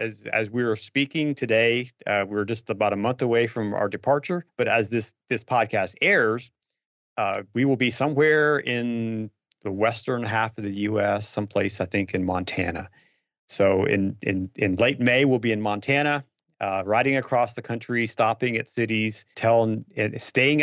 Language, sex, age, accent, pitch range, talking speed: English, male, 40-59, American, 105-130 Hz, 170 wpm